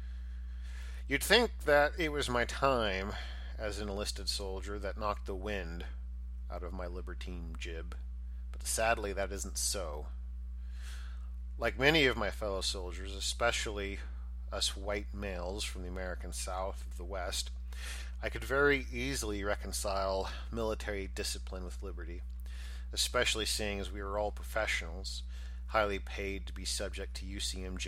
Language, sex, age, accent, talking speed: English, male, 40-59, American, 140 wpm